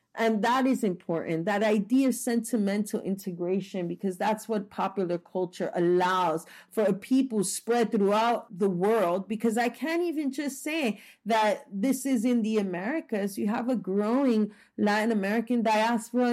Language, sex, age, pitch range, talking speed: English, female, 40-59, 190-235 Hz, 150 wpm